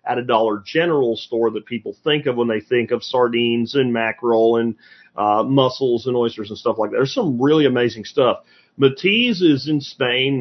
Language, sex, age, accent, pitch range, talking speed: English, male, 40-59, American, 120-155 Hz, 195 wpm